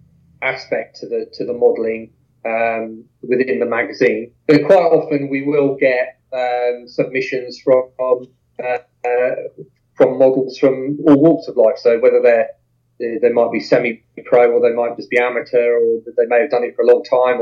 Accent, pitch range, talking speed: British, 125-145 Hz, 175 wpm